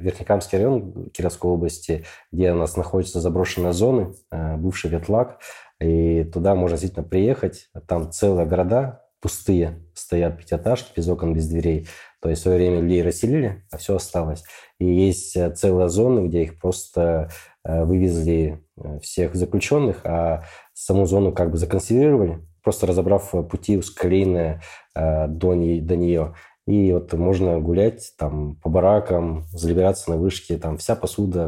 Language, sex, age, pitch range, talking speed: Russian, male, 20-39, 85-95 Hz, 135 wpm